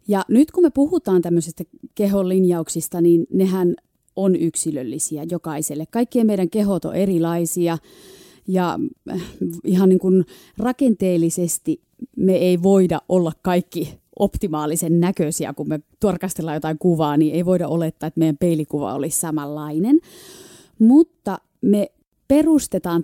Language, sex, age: Finnish, female, 30-49